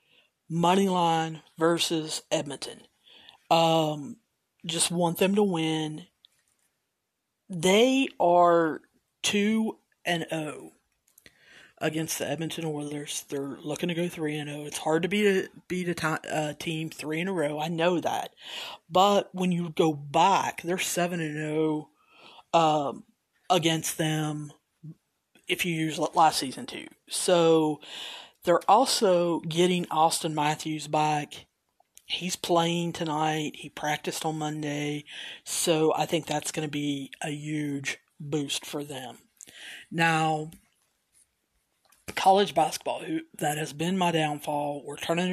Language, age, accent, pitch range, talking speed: English, 40-59, American, 150-170 Hz, 120 wpm